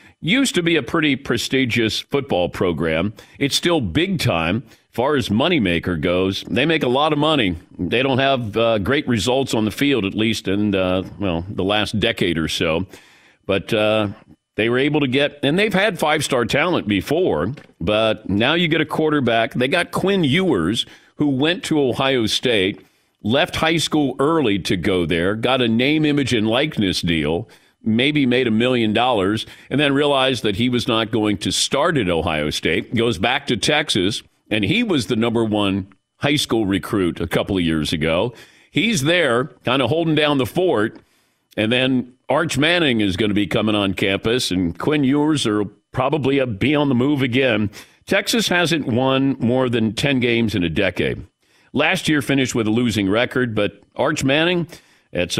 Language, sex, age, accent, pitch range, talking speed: English, male, 50-69, American, 105-145 Hz, 185 wpm